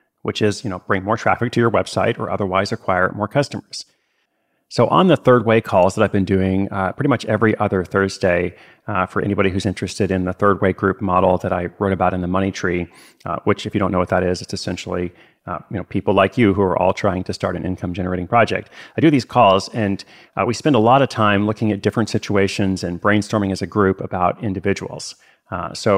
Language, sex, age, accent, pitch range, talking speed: English, male, 30-49, American, 95-110 Hz, 235 wpm